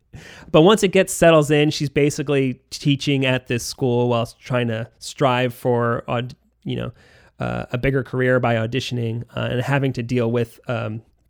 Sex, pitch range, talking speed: male, 120-150 Hz, 170 wpm